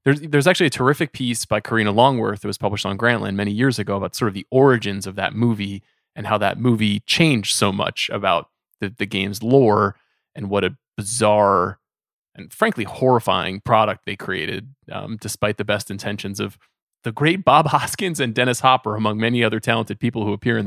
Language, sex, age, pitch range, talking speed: English, male, 20-39, 105-135 Hz, 195 wpm